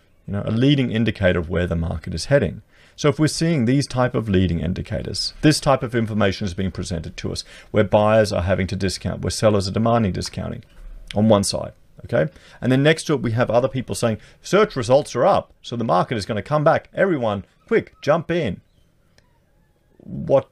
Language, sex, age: English, male, 40-59